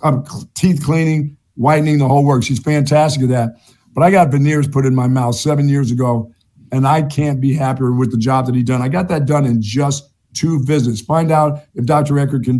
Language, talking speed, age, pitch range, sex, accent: English, 225 wpm, 50-69, 125-145 Hz, male, American